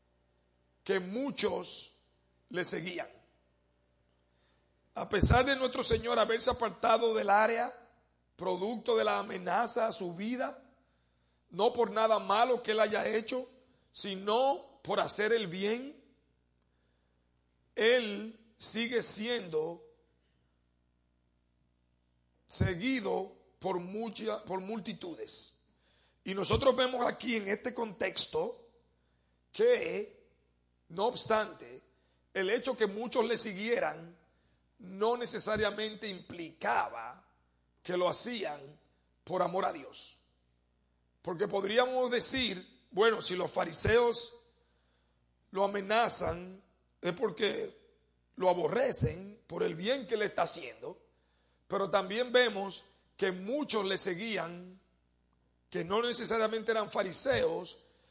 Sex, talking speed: male, 100 wpm